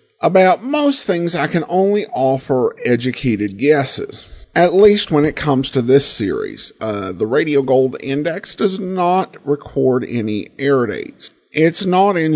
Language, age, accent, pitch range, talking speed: English, 50-69, American, 125-185 Hz, 150 wpm